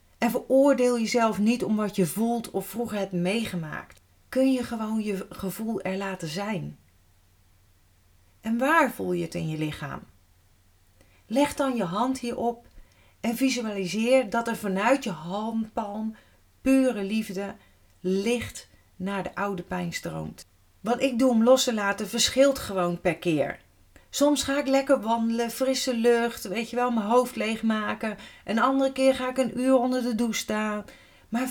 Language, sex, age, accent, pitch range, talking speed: Dutch, female, 40-59, Dutch, 185-245 Hz, 160 wpm